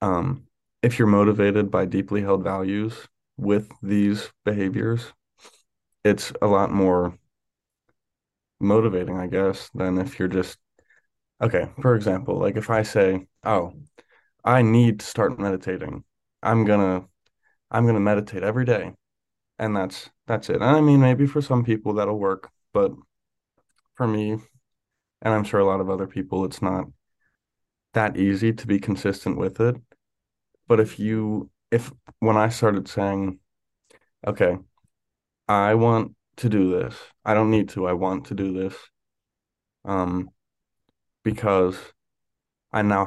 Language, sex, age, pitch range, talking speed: English, male, 20-39, 95-115 Hz, 145 wpm